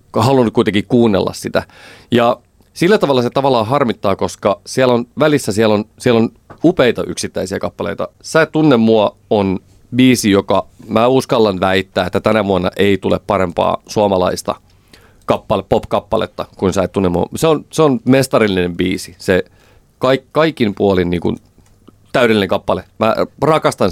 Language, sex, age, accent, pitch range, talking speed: Finnish, male, 30-49, native, 95-120 Hz, 150 wpm